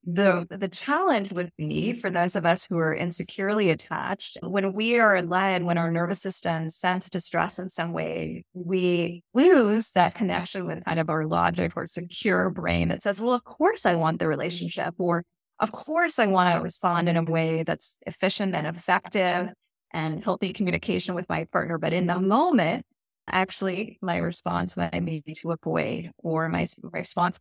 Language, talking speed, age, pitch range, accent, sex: English, 175 wpm, 30-49, 170-200 Hz, American, female